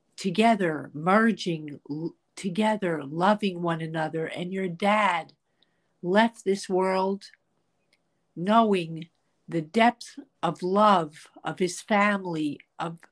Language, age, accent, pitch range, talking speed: English, 50-69, American, 175-210 Hz, 95 wpm